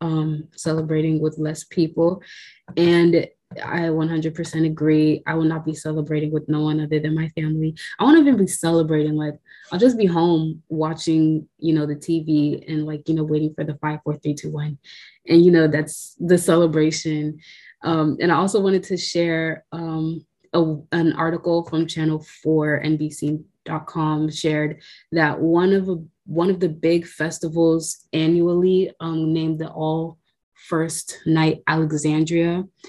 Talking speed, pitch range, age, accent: 155 wpm, 155-170 Hz, 20-39, American